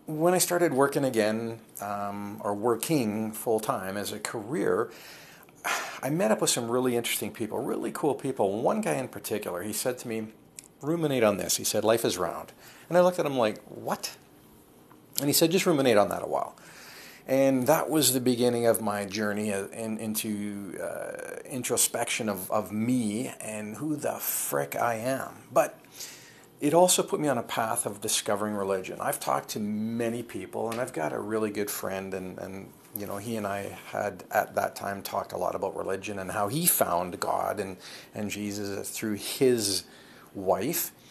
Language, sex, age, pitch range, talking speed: English, male, 40-59, 100-125 Hz, 185 wpm